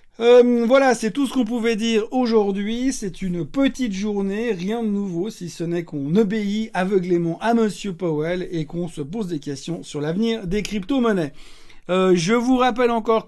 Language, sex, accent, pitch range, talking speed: French, male, French, 165-215 Hz, 180 wpm